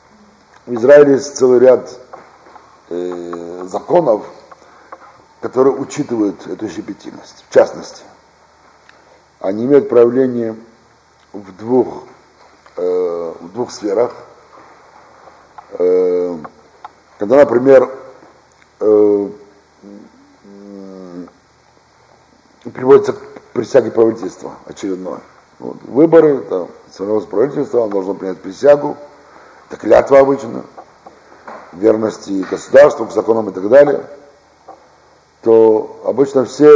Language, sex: Russian, male